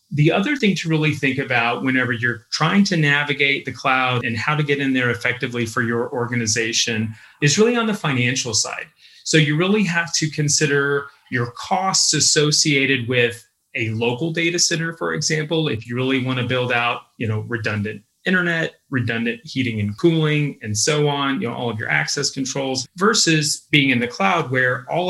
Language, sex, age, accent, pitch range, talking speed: English, male, 30-49, American, 125-155 Hz, 185 wpm